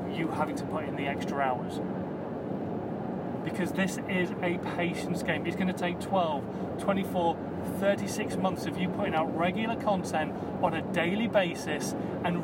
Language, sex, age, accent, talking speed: English, male, 30-49, British, 155 wpm